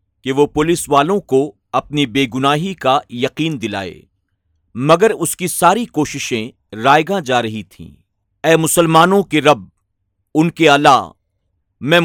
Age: 50-69